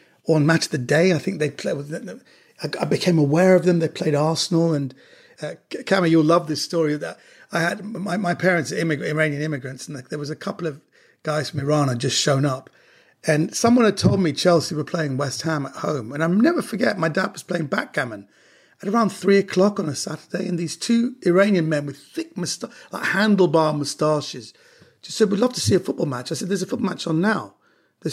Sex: male